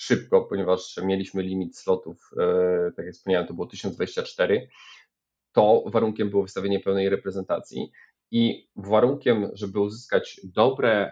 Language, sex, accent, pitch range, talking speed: Polish, male, native, 95-110 Hz, 120 wpm